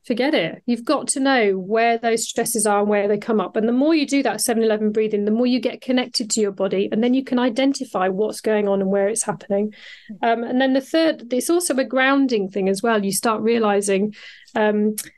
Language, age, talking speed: English, 40-59, 235 wpm